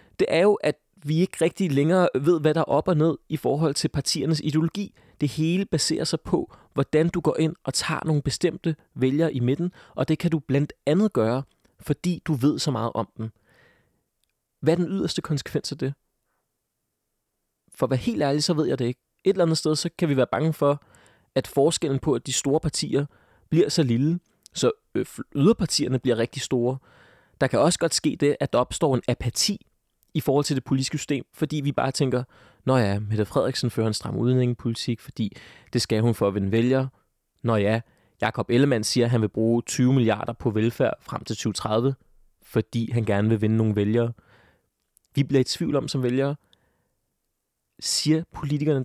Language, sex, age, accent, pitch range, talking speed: Danish, male, 30-49, native, 120-155 Hz, 200 wpm